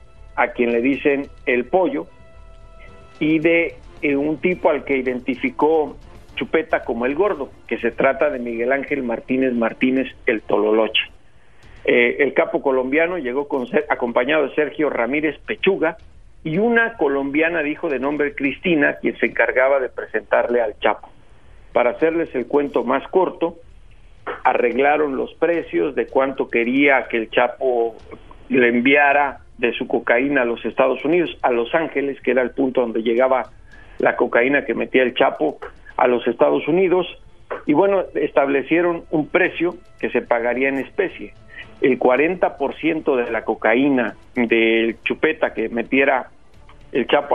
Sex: male